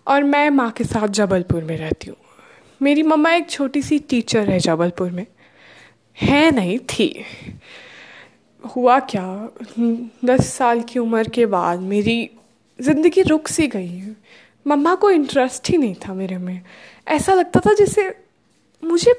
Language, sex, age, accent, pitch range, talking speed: Hindi, female, 20-39, native, 200-290 Hz, 150 wpm